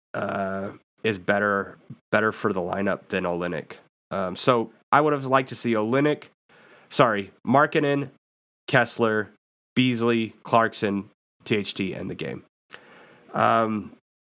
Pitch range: 100-125 Hz